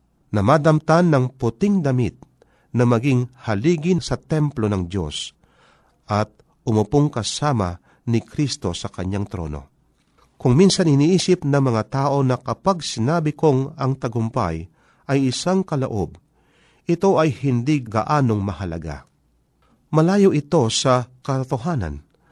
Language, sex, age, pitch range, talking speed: Filipino, male, 40-59, 100-155 Hz, 120 wpm